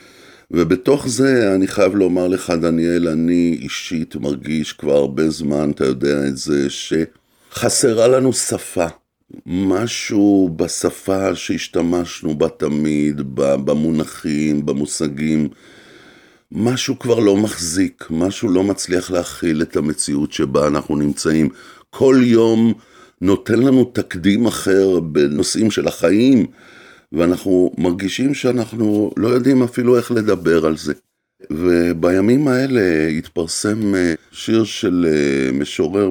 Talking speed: 105 wpm